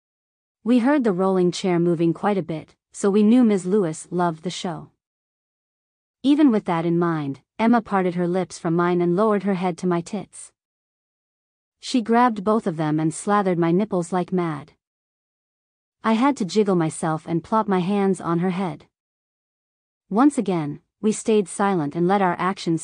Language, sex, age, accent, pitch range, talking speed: English, female, 40-59, American, 170-215 Hz, 175 wpm